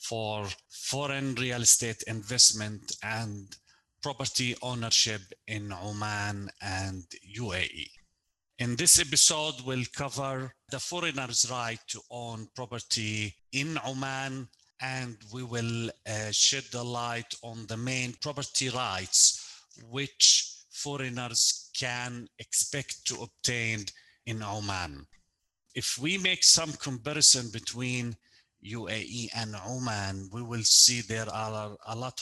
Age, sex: 40-59, male